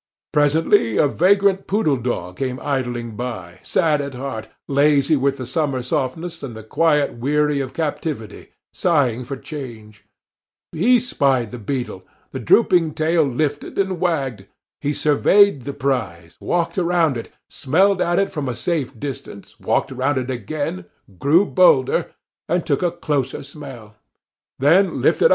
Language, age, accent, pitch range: Korean, 50-69, American, 130-170 Hz